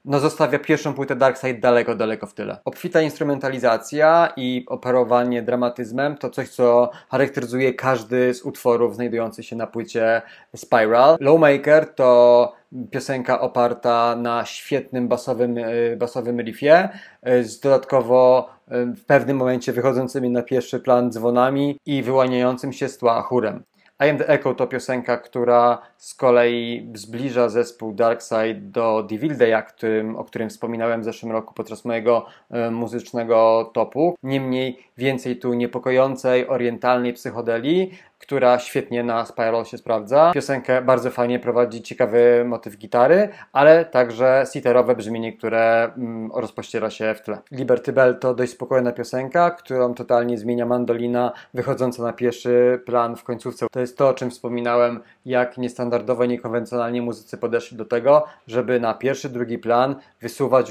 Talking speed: 135 wpm